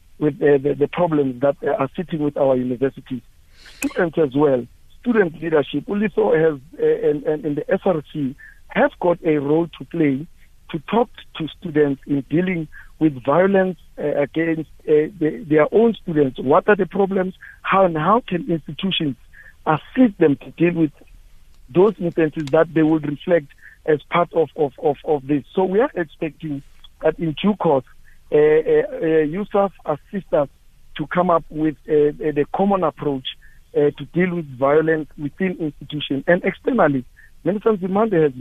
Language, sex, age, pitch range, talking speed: English, male, 50-69, 145-180 Hz, 165 wpm